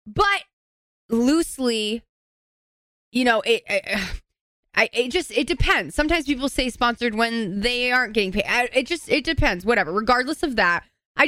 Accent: American